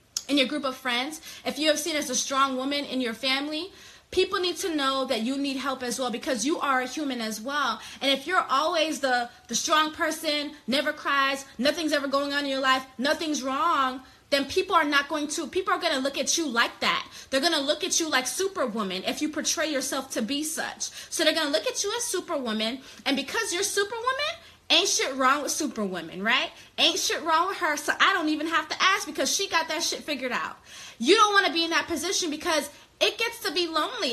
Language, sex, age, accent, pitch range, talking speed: English, female, 20-39, American, 270-340 Hz, 230 wpm